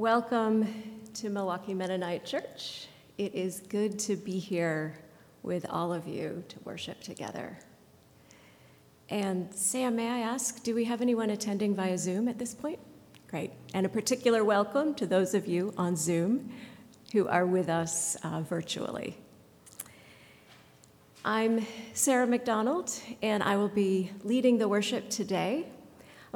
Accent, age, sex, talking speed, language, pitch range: American, 40-59, female, 140 wpm, English, 180-225 Hz